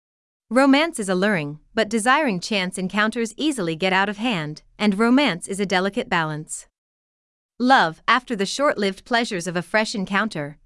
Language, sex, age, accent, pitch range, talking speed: English, female, 30-49, American, 175-245 Hz, 160 wpm